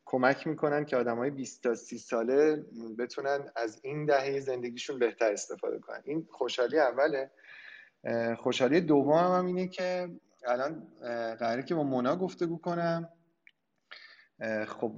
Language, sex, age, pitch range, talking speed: Persian, male, 30-49, 115-145 Hz, 135 wpm